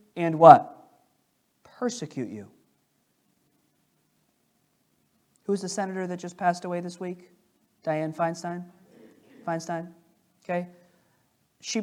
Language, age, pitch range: English, 40-59, 150-200 Hz